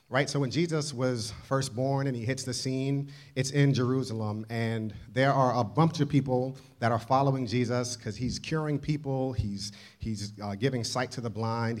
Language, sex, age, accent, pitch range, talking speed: English, male, 40-59, American, 110-135 Hz, 195 wpm